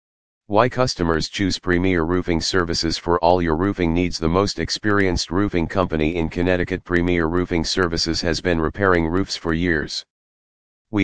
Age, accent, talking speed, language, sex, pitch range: 40-59, American, 150 wpm, English, male, 80-100 Hz